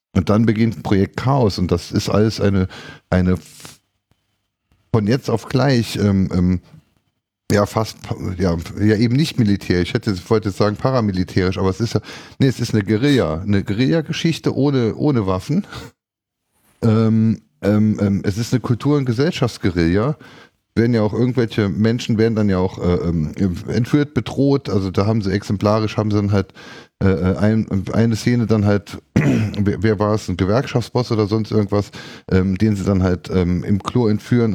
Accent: German